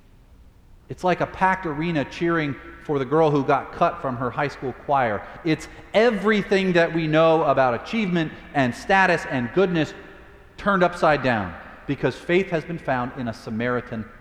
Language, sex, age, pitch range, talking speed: English, male, 40-59, 110-145 Hz, 165 wpm